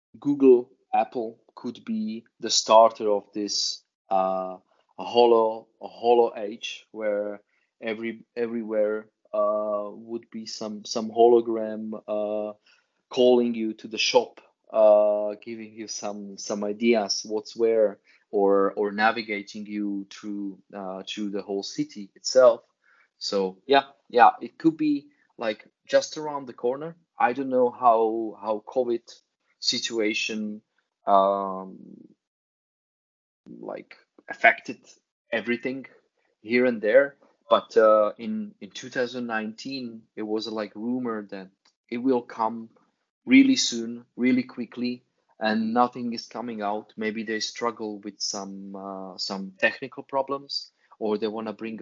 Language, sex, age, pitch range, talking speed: English, male, 20-39, 105-120 Hz, 125 wpm